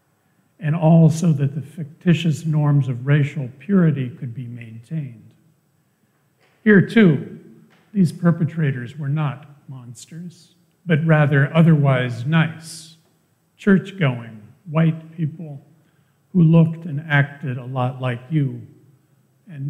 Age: 50-69